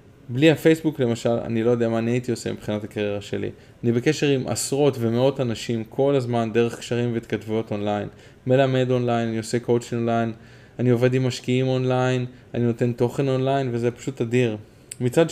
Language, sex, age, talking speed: Hebrew, male, 20-39, 170 wpm